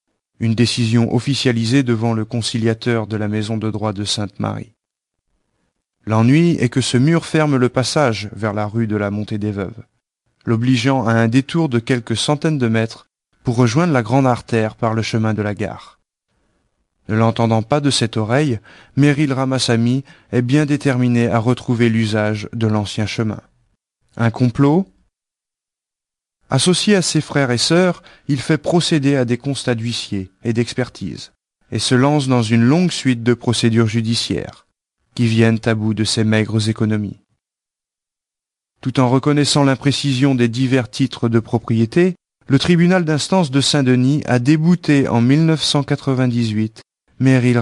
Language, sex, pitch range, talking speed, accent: French, male, 110-135 Hz, 150 wpm, French